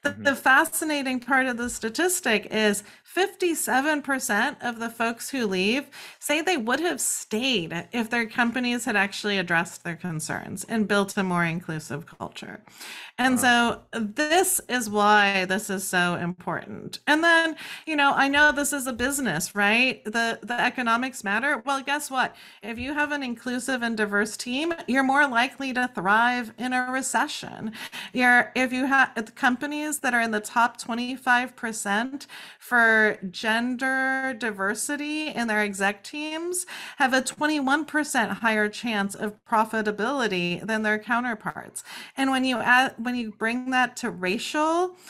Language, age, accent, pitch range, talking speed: English, 40-59, American, 215-280 Hz, 150 wpm